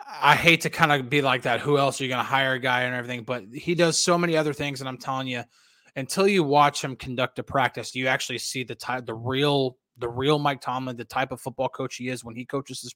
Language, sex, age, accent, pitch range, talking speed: English, male, 20-39, American, 130-160 Hz, 275 wpm